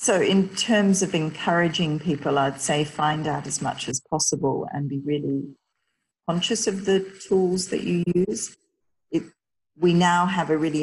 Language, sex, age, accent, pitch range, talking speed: English, female, 40-59, Australian, 145-175 Hz, 165 wpm